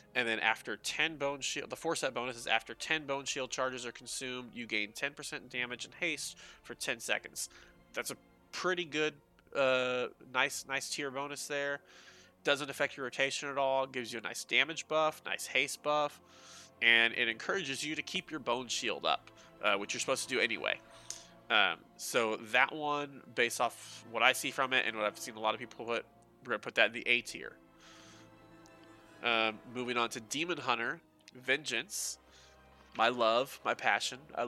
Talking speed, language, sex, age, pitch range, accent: 190 wpm, English, male, 20-39, 115-145 Hz, American